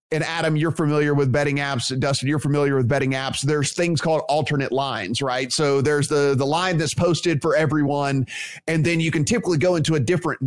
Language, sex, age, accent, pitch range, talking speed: English, male, 30-49, American, 140-165 Hz, 210 wpm